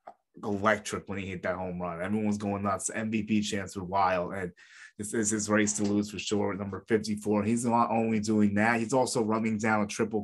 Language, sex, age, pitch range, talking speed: English, male, 20-39, 100-110 Hz, 210 wpm